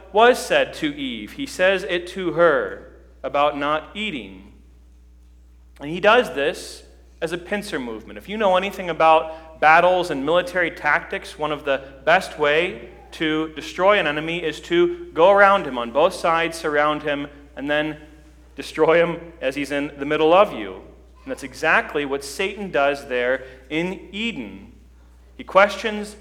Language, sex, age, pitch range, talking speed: English, male, 40-59, 145-195 Hz, 160 wpm